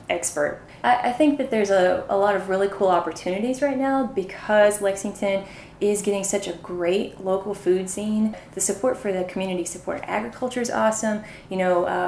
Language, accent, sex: English, American, female